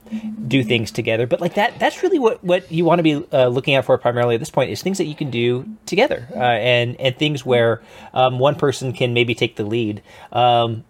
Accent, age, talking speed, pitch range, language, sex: American, 20-39, 235 wpm, 115-145 Hz, English, male